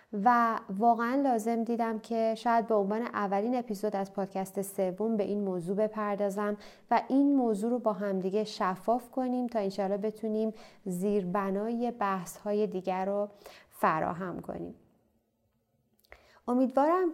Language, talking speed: Persian, 130 wpm